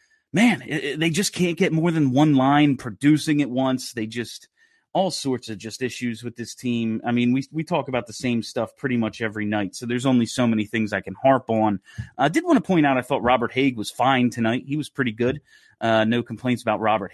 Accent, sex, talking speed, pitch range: American, male, 245 wpm, 115-165 Hz